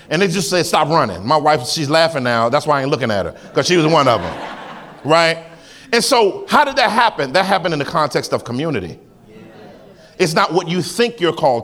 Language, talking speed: English, 230 wpm